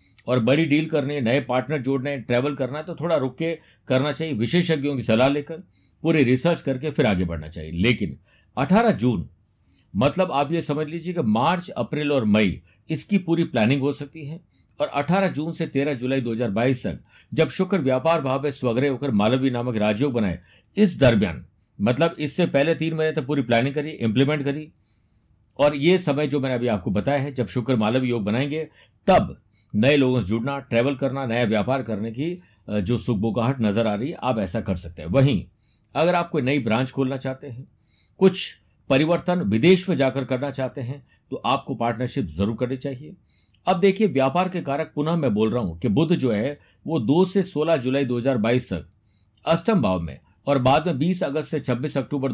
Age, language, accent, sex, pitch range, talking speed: 50-69, Hindi, native, male, 115-155 Hz, 195 wpm